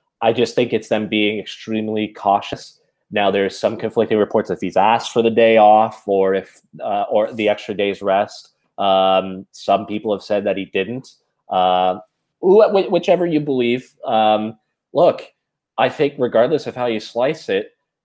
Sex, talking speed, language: male, 170 wpm, English